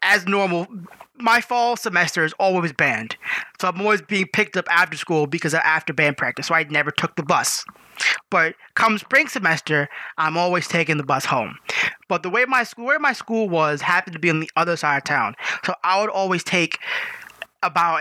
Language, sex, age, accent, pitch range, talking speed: English, male, 20-39, American, 170-245 Hz, 205 wpm